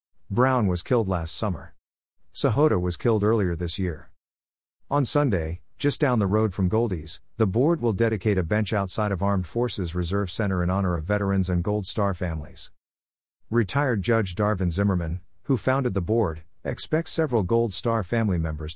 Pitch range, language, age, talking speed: 90-115 Hz, English, 50-69, 170 wpm